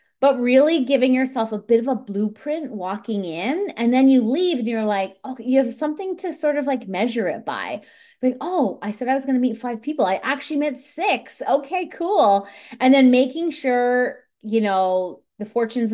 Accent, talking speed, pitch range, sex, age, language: American, 205 wpm, 210-265 Hz, female, 30-49, English